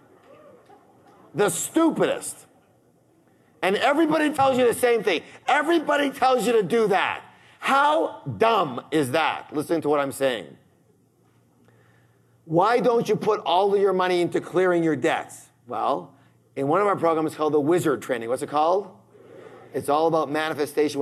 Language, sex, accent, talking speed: English, male, American, 150 wpm